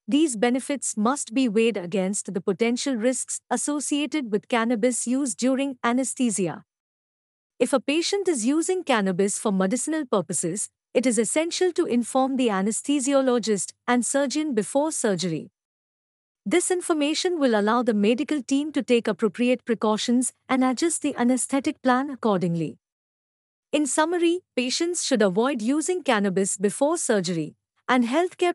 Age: 50-69